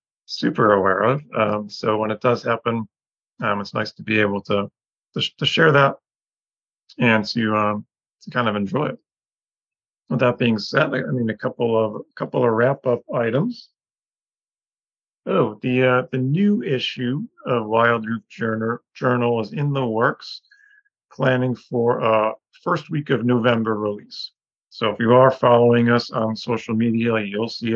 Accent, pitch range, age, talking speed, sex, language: American, 110-125 Hz, 40-59, 170 wpm, male, English